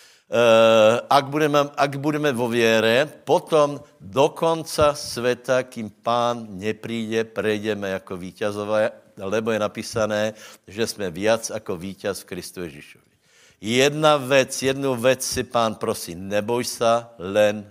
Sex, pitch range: male, 105-130 Hz